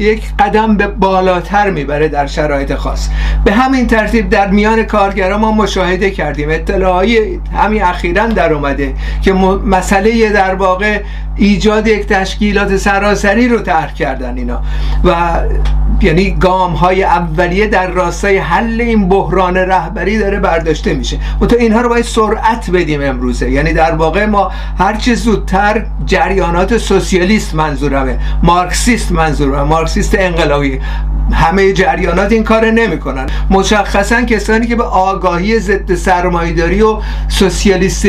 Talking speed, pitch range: 130 wpm, 170-215 Hz